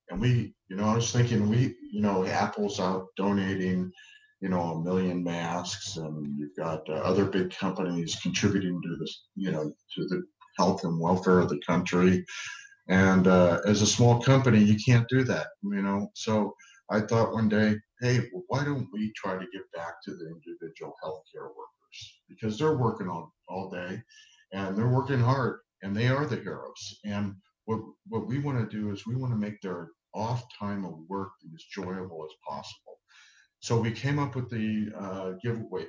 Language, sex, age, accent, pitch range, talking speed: English, male, 50-69, American, 90-120 Hz, 190 wpm